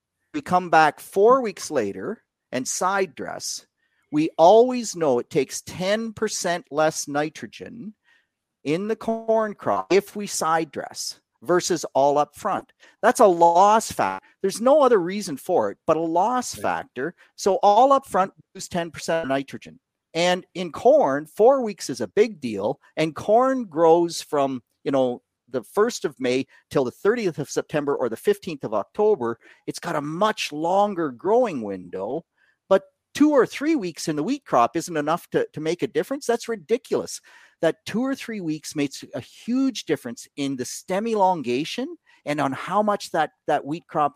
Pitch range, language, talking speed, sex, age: 145-215 Hz, English, 170 wpm, male, 50-69